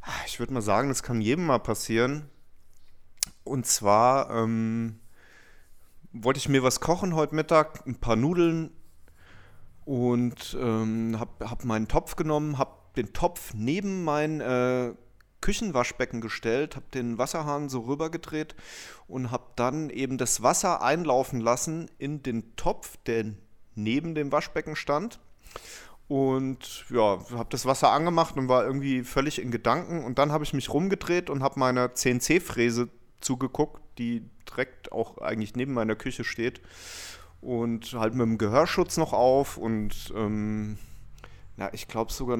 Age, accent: 30-49, German